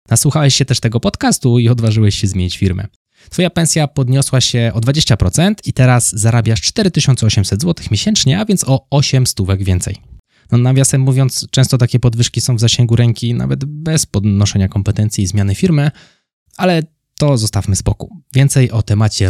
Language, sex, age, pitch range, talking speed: Polish, male, 20-39, 105-140 Hz, 160 wpm